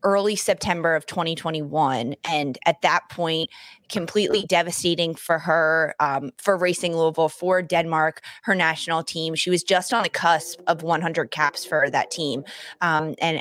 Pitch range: 160-185 Hz